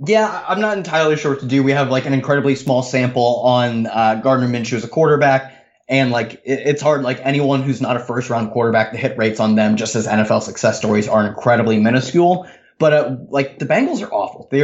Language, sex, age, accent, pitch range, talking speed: English, male, 20-39, American, 115-135 Hz, 225 wpm